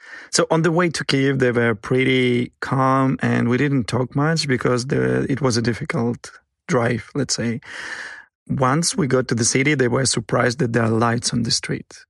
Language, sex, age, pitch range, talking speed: English, male, 30-49, 120-135 Hz, 200 wpm